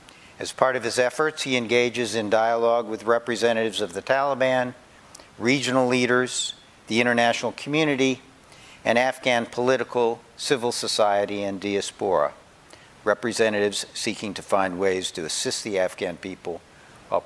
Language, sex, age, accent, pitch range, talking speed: English, male, 60-79, American, 110-130 Hz, 130 wpm